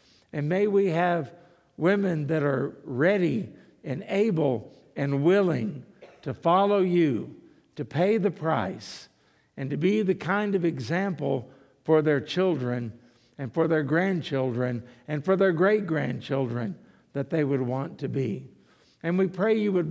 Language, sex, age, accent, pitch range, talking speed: English, male, 60-79, American, 140-180 Hz, 145 wpm